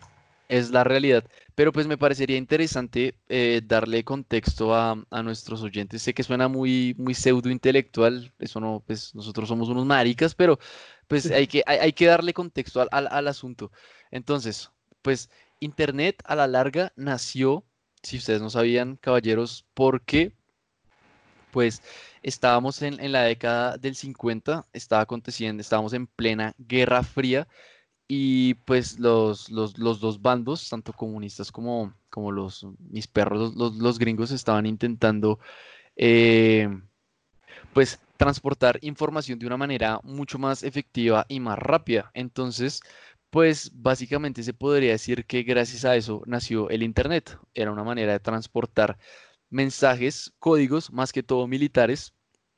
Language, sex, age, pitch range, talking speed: Spanish, male, 20-39, 115-135 Hz, 145 wpm